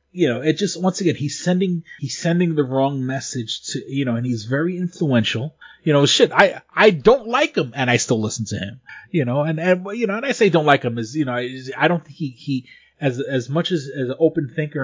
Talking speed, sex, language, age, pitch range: 255 wpm, male, English, 30-49, 125-160 Hz